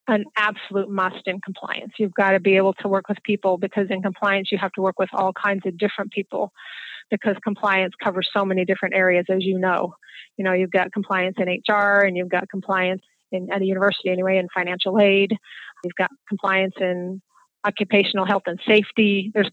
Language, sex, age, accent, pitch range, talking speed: English, female, 30-49, American, 190-215 Hz, 200 wpm